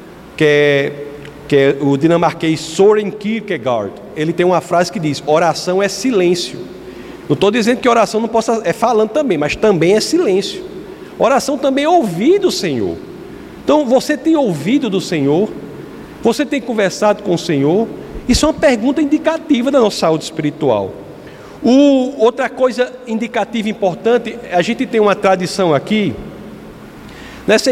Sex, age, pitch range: male, 50-69, 180-250 Hz